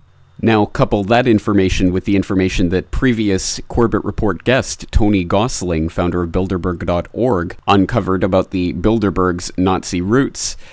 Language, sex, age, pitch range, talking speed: English, male, 30-49, 90-110 Hz, 130 wpm